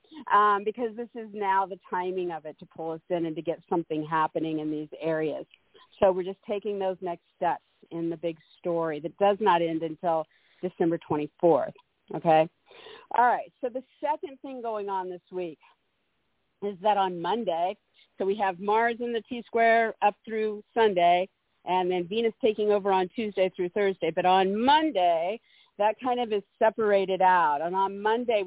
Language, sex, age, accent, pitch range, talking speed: English, female, 50-69, American, 170-210 Hz, 180 wpm